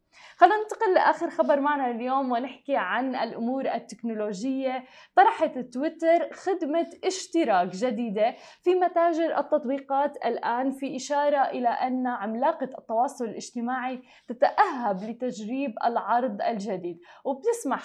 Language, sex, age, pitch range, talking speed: Arabic, female, 20-39, 235-295 Hz, 105 wpm